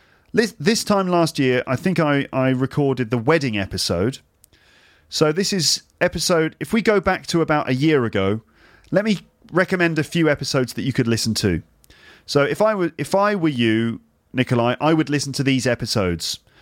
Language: English